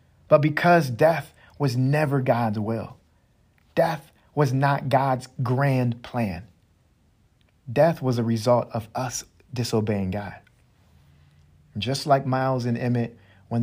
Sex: male